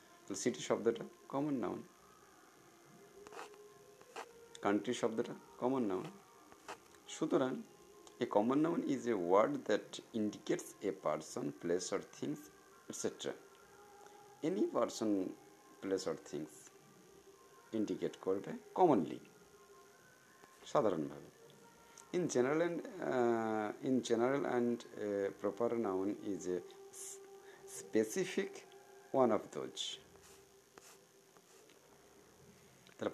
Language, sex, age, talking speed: Bengali, male, 50-69, 85 wpm